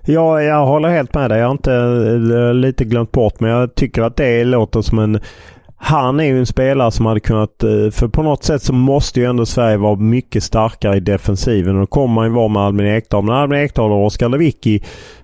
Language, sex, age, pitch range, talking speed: English, male, 30-49, 110-135 Hz, 230 wpm